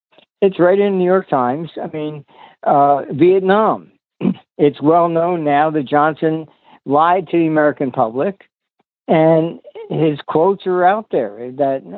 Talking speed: 140 wpm